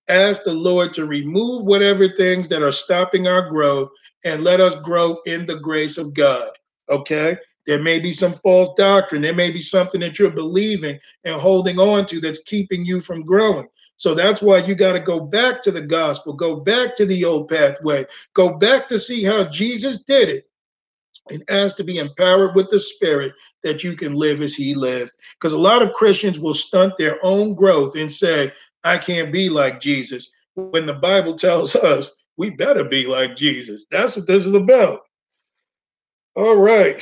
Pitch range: 155-200 Hz